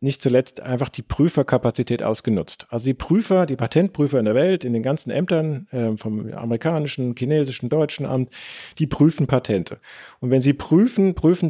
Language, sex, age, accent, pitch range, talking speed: German, male, 40-59, German, 125-160 Hz, 165 wpm